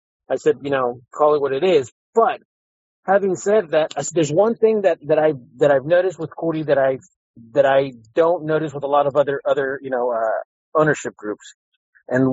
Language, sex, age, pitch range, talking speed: English, male, 30-49, 140-180 Hz, 205 wpm